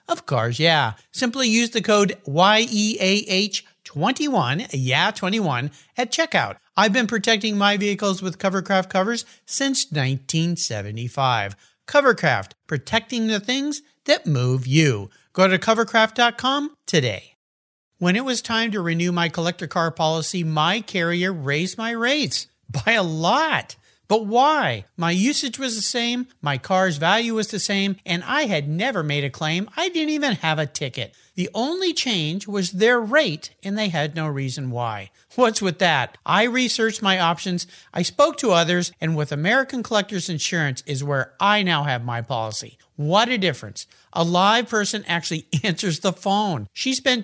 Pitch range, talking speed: 155-225 Hz, 160 wpm